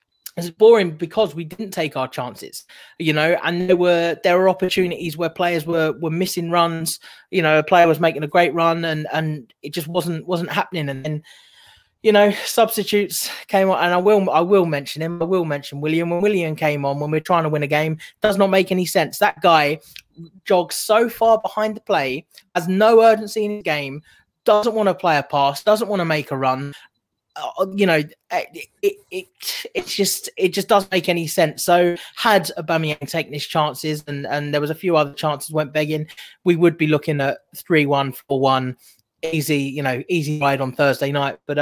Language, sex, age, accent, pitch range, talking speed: English, male, 20-39, British, 150-185 Hz, 210 wpm